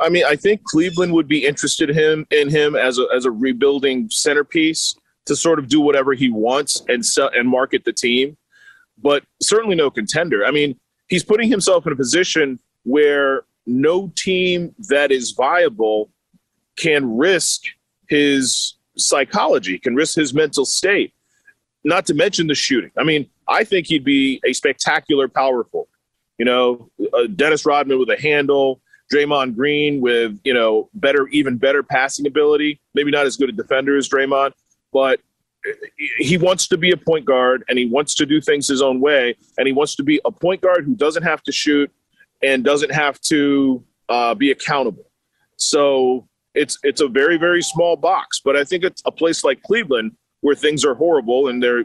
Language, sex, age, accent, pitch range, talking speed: English, male, 30-49, American, 135-170 Hz, 180 wpm